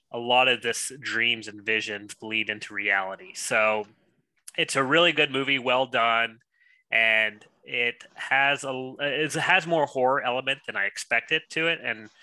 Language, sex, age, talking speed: English, male, 20-39, 160 wpm